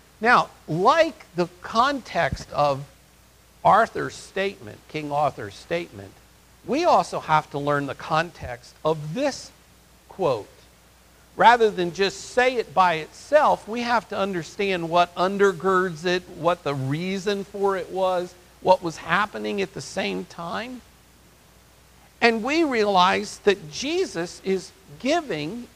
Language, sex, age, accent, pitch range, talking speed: English, male, 50-69, American, 150-205 Hz, 125 wpm